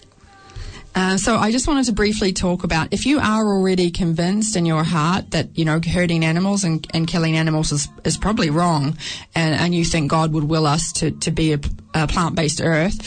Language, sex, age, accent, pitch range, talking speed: Filipino, female, 20-39, Australian, 165-200 Hz, 210 wpm